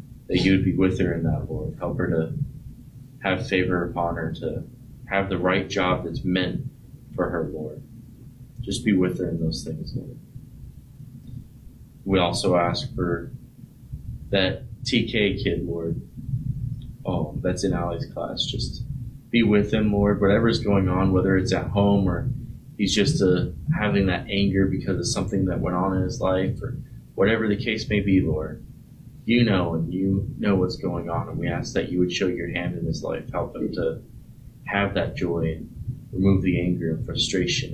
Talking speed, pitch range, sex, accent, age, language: 180 wpm, 90-125 Hz, male, American, 20-39, English